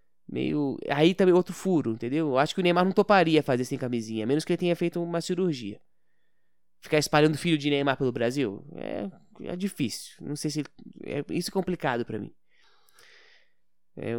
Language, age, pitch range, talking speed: Portuguese, 20-39, 135-180 Hz, 190 wpm